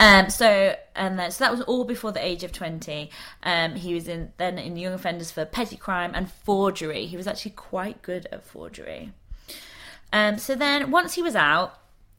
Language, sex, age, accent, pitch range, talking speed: English, female, 20-39, British, 165-225 Hz, 195 wpm